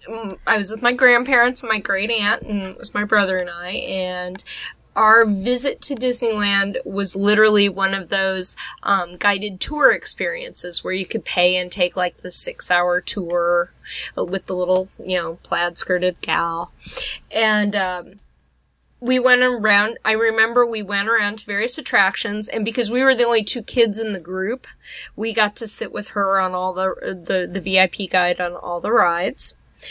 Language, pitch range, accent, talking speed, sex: English, 185-230 Hz, American, 175 wpm, female